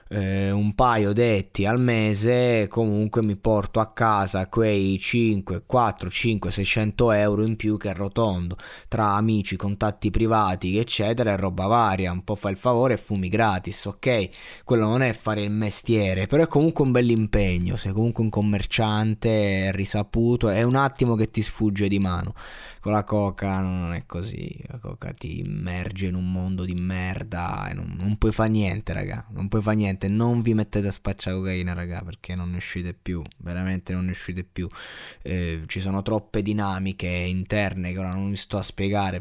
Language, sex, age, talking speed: Italian, male, 20-39, 180 wpm